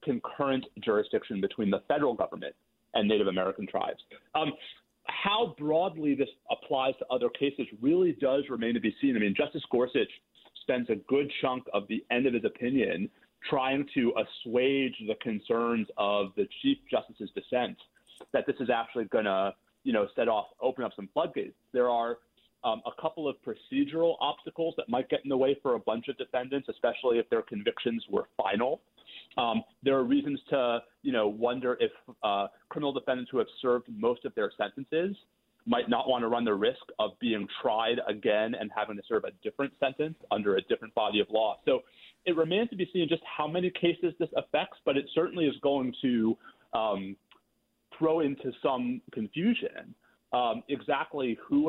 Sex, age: male, 30-49